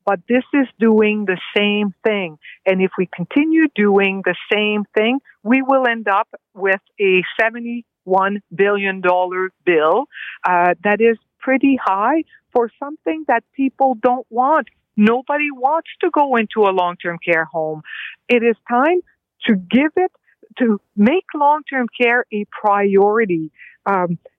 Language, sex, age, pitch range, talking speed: English, female, 50-69, 195-265 Hz, 140 wpm